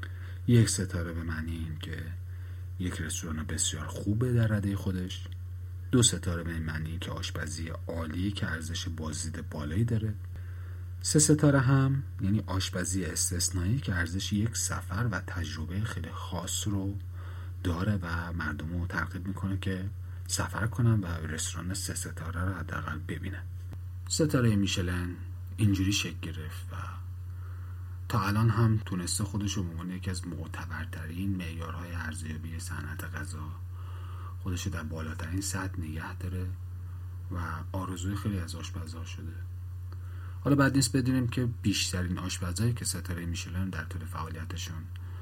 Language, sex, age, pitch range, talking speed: Persian, male, 40-59, 90-95 Hz, 135 wpm